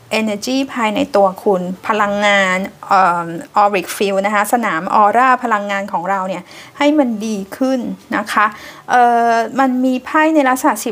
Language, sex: Thai, female